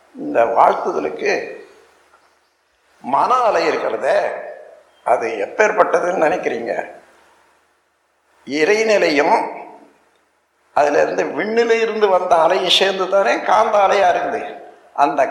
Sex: male